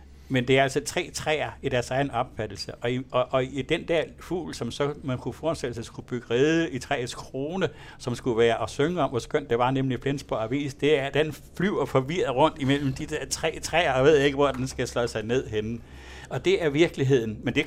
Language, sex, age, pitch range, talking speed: Danish, male, 60-79, 125-150 Hz, 245 wpm